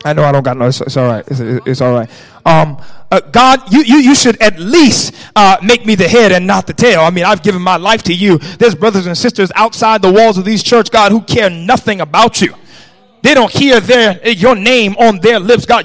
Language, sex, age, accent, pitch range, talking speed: English, male, 30-49, American, 180-255 Hz, 250 wpm